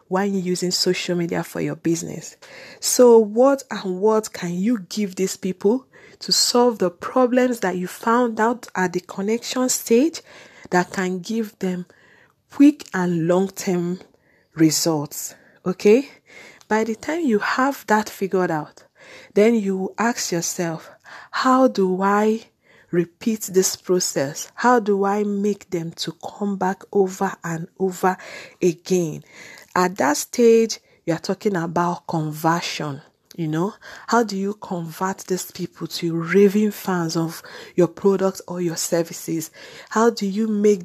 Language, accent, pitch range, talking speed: English, Nigerian, 175-220 Hz, 140 wpm